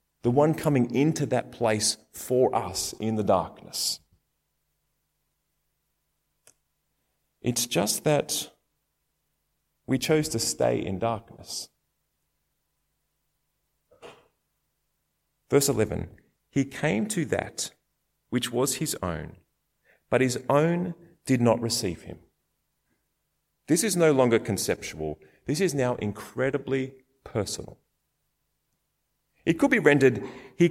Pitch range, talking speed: 120-165 Hz, 100 wpm